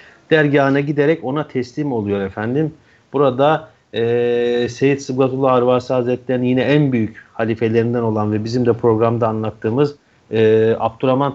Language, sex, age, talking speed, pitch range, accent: Turkish, male, 40-59, 125 wpm, 115-140 Hz, native